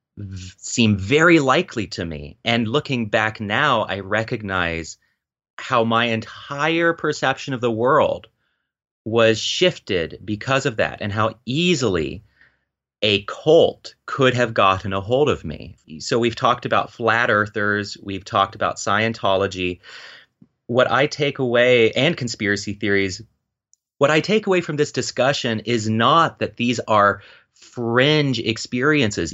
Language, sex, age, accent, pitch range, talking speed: English, male, 30-49, American, 100-130 Hz, 135 wpm